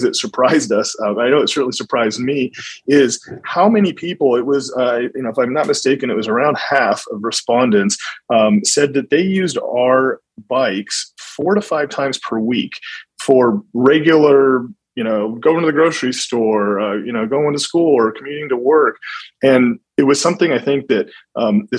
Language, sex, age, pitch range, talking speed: English, male, 30-49, 110-150 Hz, 190 wpm